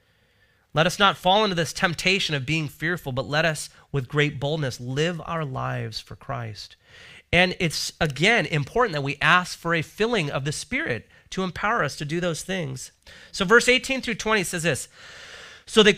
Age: 30-49